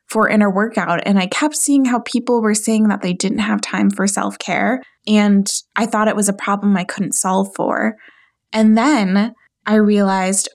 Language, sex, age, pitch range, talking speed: English, female, 20-39, 195-230 Hz, 195 wpm